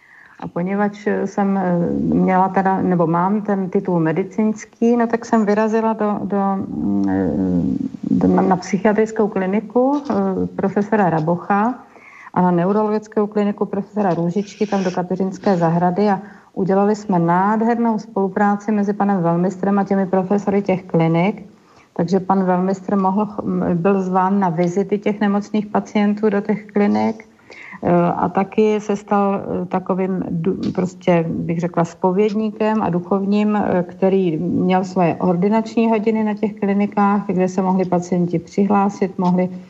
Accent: native